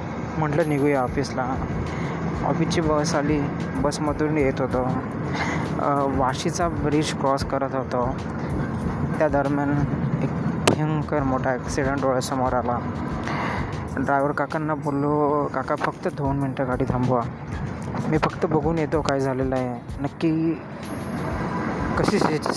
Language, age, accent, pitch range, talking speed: Marathi, 20-39, native, 140-160 Hz, 80 wpm